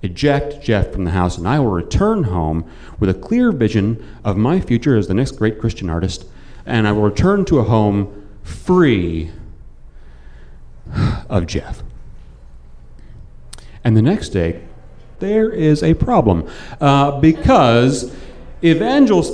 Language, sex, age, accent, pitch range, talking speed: English, male, 40-59, American, 105-165 Hz, 135 wpm